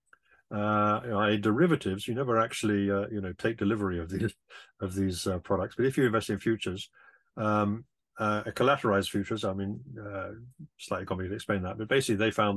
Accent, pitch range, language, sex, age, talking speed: British, 100-125 Hz, English, male, 50-69, 180 wpm